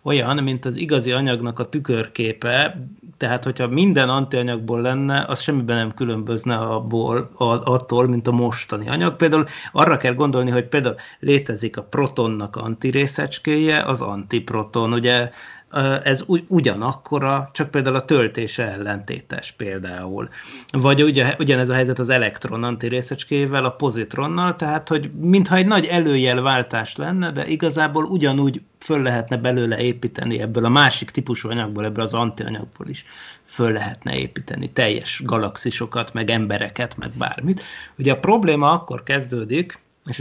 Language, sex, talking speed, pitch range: Hungarian, male, 135 wpm, 115-140 Hz